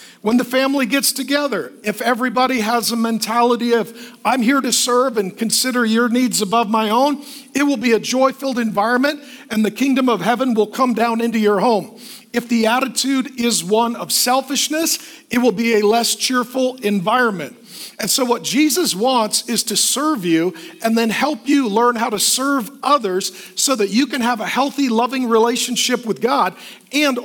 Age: 40-59